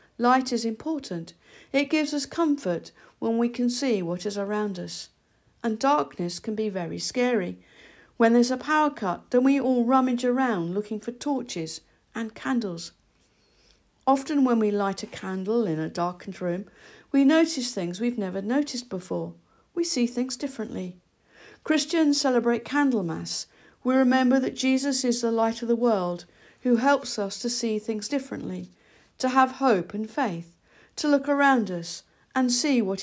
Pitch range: 190-255 Hz